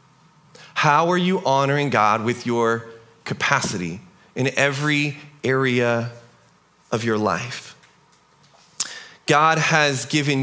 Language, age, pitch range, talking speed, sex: English, 30-49, 125-170 Hz, 100 wpm, male